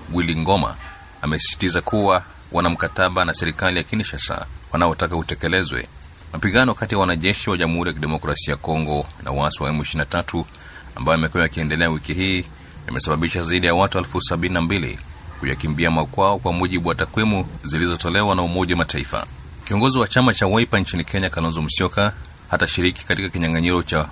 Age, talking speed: 30-49, 155 wpm